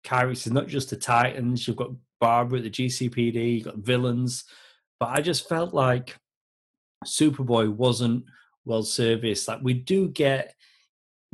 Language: English